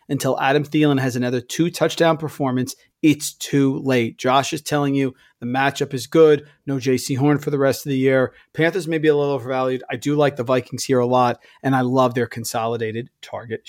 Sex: male